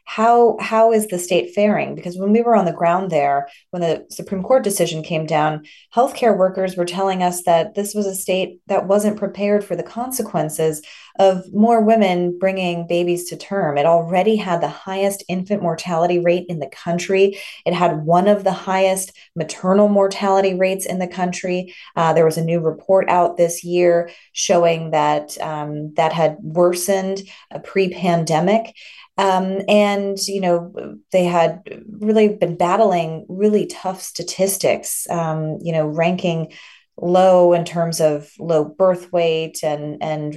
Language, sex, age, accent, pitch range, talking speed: English, female, 30-49, American, 165-195 Hz, 160 wpm